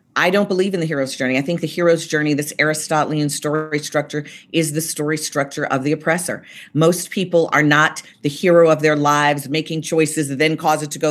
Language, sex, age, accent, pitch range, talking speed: English, female, 40-59, American, 155-215 Hz, 215 wpm